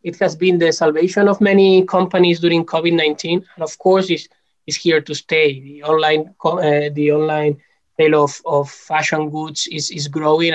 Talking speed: 180 wpm